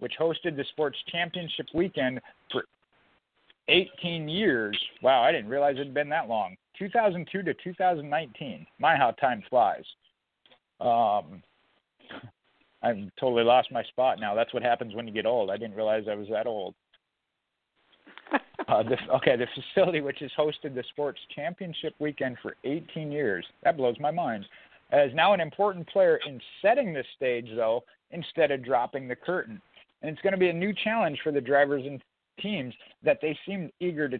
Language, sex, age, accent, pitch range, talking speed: English, male, 40-59, American, 125-165 Hz, 175 wpm